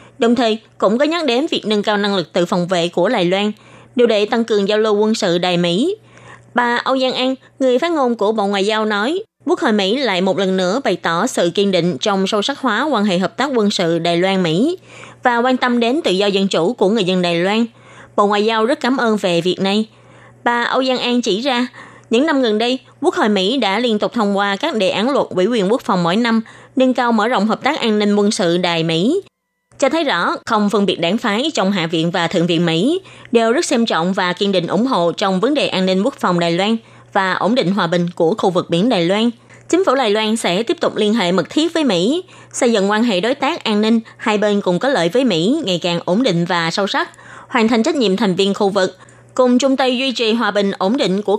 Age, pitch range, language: 20-39, 185-245 Hz, Vietnamese